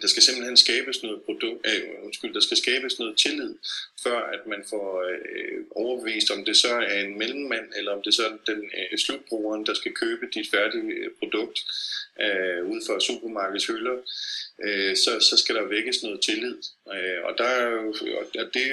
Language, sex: Danish, male